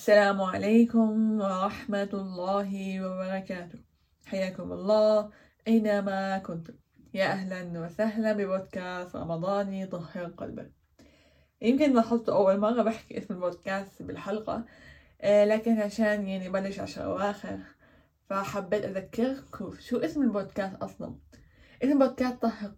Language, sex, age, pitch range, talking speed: Arabic, female, 20-39, 190-220 Hz, 115 wpm